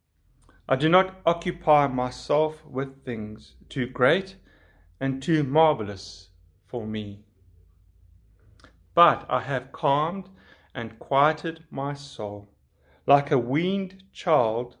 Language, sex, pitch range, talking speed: English, male, 100-135 Hz, 105 wpm